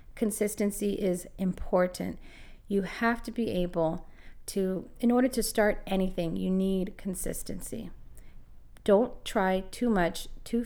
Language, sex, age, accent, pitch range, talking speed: English, female, 30-49, American, 180-230 Hz, 125 wpm